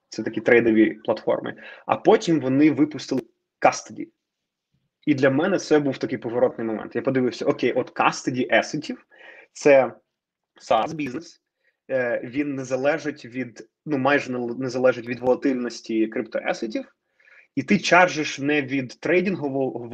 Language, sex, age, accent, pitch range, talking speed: Ukrainian, male, 20-39, native, 125-165 Hz, 125 wpm